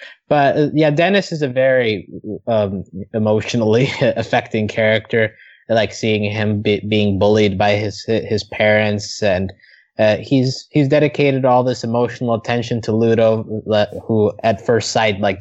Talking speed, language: 140 wpm, English